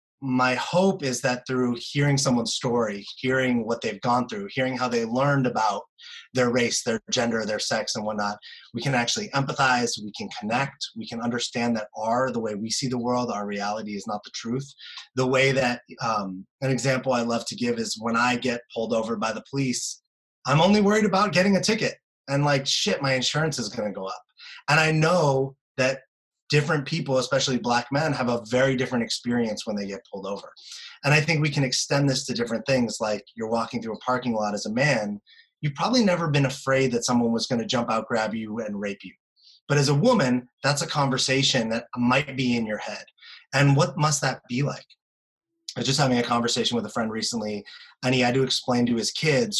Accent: American